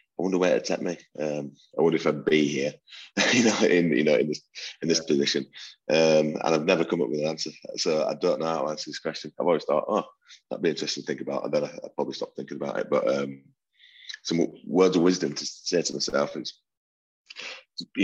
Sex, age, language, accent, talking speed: male, 30-49, English, British, 240 wpm